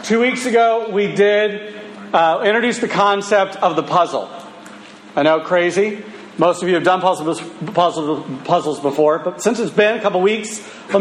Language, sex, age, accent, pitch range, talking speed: English, male, 40-59, American, 180-230 Hz, 175 wpm